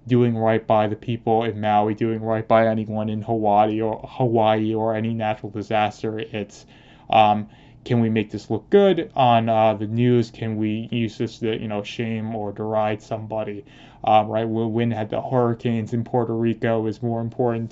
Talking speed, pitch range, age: 185 wpm, 110-120 Hz, 20-39